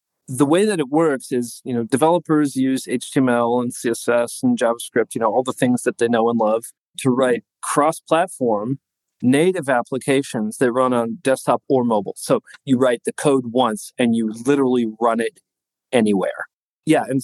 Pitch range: 120-155 Hz